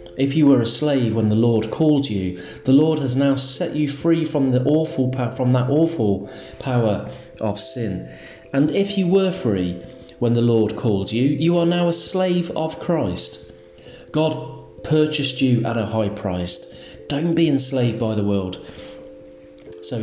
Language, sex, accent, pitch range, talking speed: English, male, British, 100-150 Hz, 165 wpm